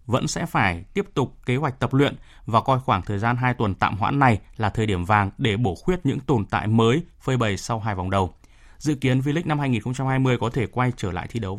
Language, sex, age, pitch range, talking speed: Vietnamese, male, 20-39, 100-135 Hz, 250 wpm